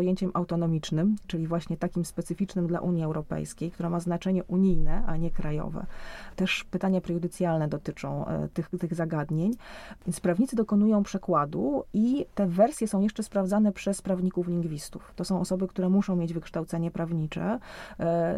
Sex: female